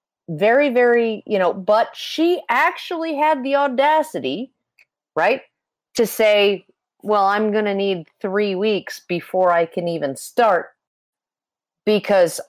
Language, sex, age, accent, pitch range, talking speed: English, female, 40-59, American, 175-225 Hz, 125 wpm